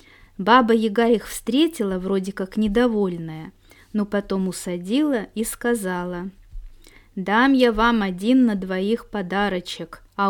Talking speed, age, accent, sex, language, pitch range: 110 wpm, 20-39, native, female, Russian, 175-225 Hz